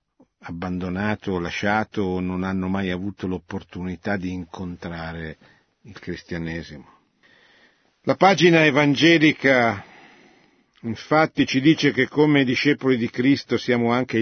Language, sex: Italian, male